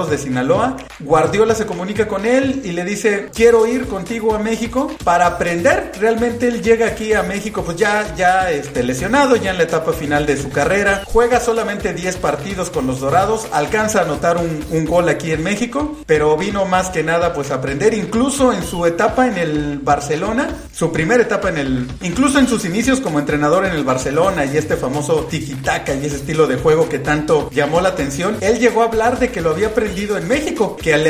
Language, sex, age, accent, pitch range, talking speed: Spanish, male, 40-59, Mexican, 150-225 Hz, 210 wpm